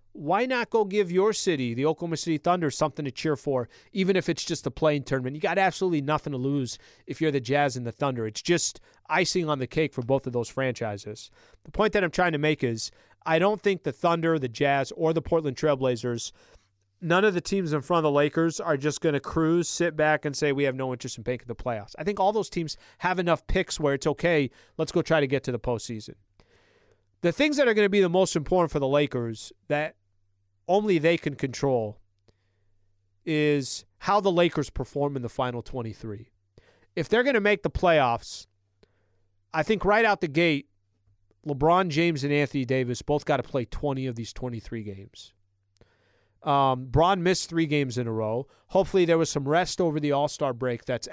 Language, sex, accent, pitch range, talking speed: English, male, American, 120-165 Hz, 210 wpm